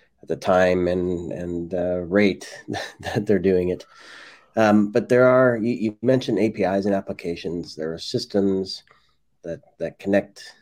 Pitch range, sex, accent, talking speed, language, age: 90-105 Hz, male, American, 145 wpm, English, 30-49